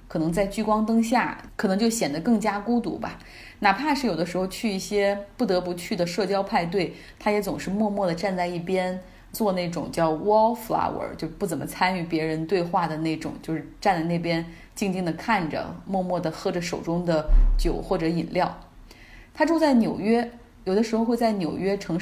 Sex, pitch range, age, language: female, 170-220 Hz, 20-39, Chinese